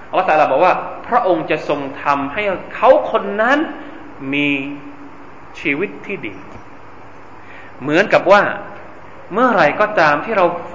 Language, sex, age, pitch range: Thai, male, 20-39, 175-285 Hz